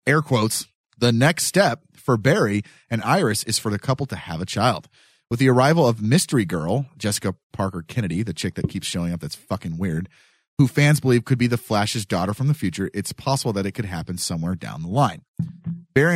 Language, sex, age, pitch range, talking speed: English, male, 30-49, 95-125 Hz, 210 wpm